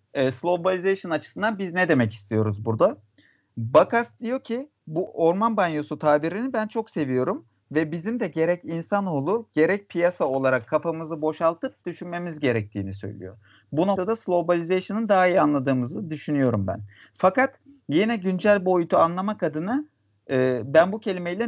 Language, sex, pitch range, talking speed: Turkish, male, 145-195 Hz, 135 wpm